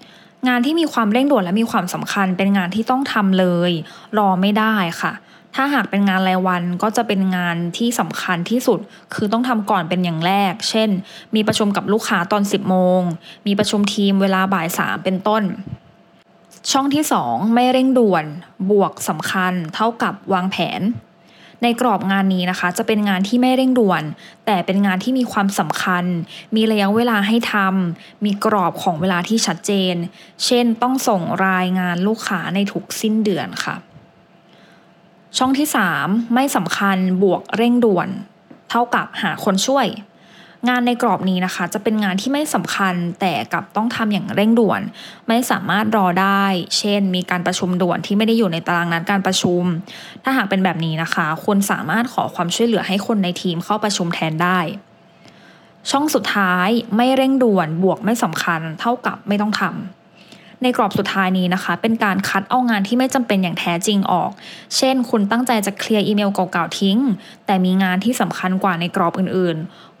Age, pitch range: 20-39, 185-225 Hz